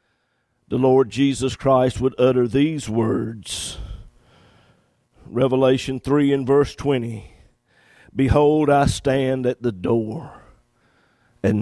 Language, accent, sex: English, American, male